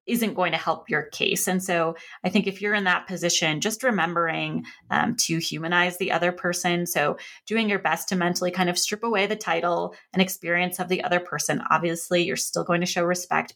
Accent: American